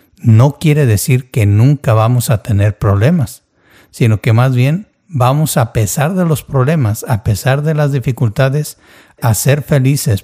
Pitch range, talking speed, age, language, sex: 110-140 Hz, 160 wpm, 60-79, Spanish, male